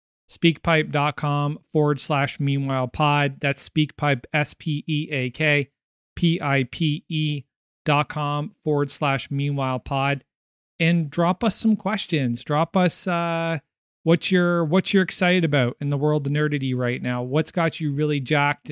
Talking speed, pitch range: 130 wpm, 135-160 Hz